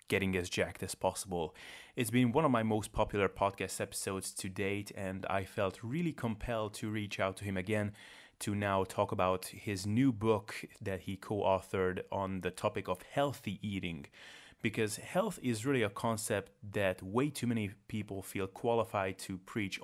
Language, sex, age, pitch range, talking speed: English, male, 30-49, 95-115 Hz, 175 wpm